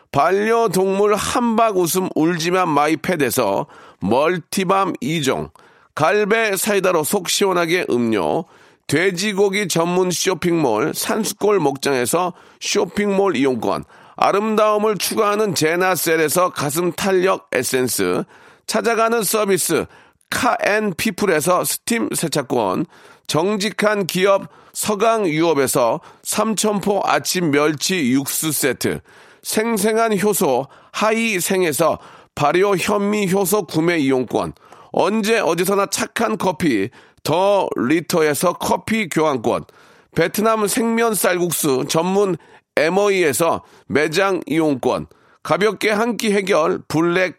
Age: 40-59